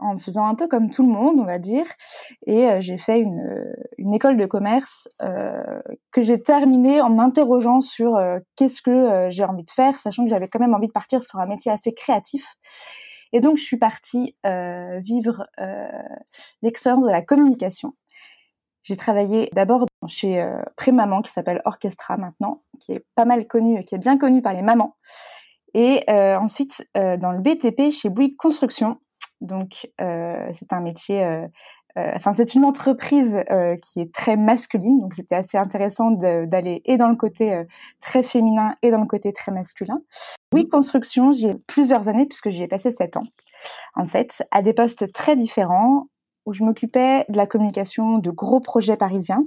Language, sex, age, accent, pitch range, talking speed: French, female, 20-39, French, 195-260 Hz, 190 wpm